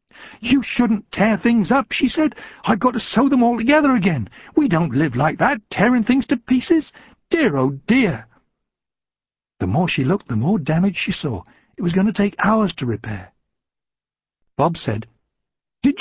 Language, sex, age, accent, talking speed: English, male, 60-79, British, 175 wpm